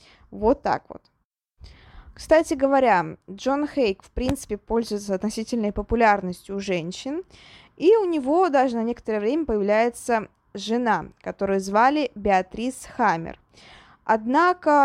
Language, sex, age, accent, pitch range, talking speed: Russian, female, 20-39, native, 200-245 Hz, 115 wpm